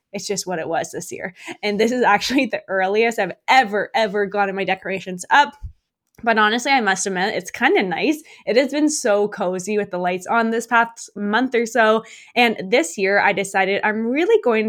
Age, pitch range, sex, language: 20-39, 195-260 Hz, female, English